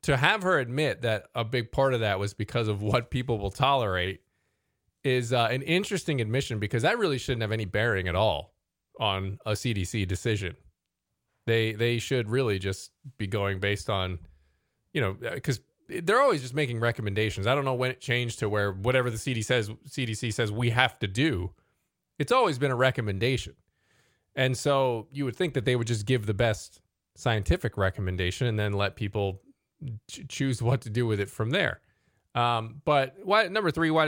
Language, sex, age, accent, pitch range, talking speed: English, male, 20-39, American, 105-135 Hz, 190 wpm